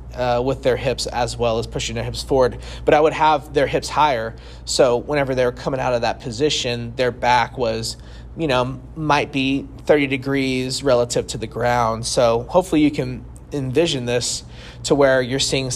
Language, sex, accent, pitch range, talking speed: English, male, American, 120-140 Hz, 185 wpm